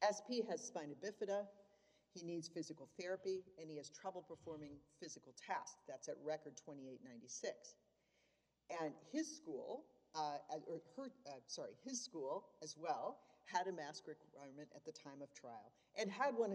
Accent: American